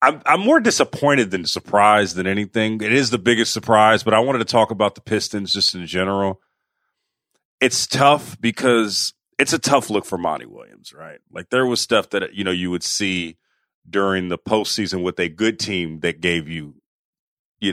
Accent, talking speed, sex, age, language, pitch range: American, 190 wpm, male, 30-49, English, 105-130 Hz